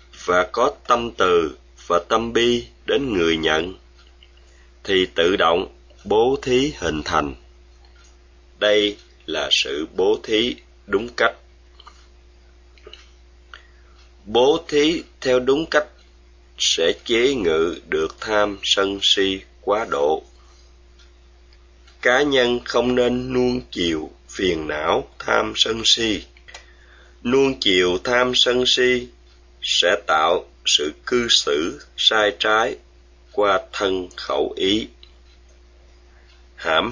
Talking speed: 105 wpm